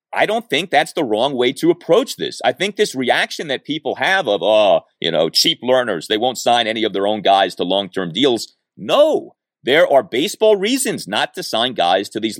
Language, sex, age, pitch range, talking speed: English, male, 30-49, 120-200 Hz, 220 wpm